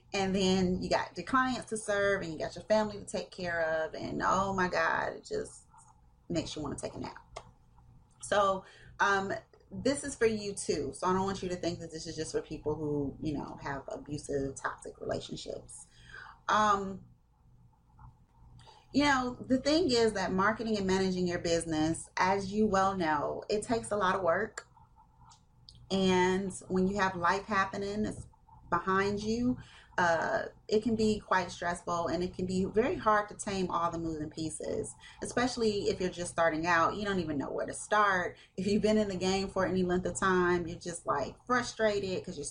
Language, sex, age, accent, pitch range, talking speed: English, female, 30-49, American, 170-210 Hz, 190 wpm